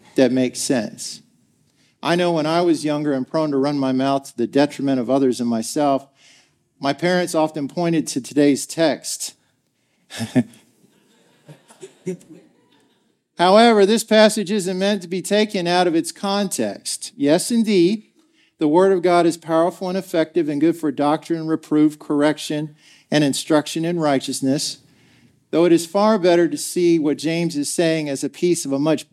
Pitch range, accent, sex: 135-175 Hz, American, male